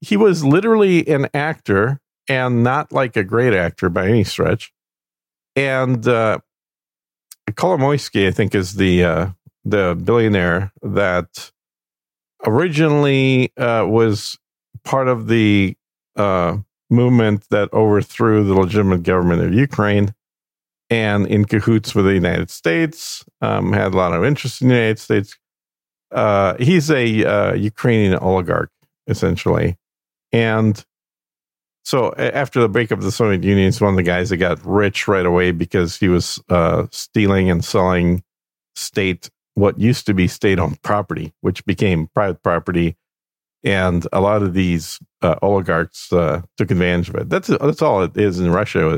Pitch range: 90-115 Hz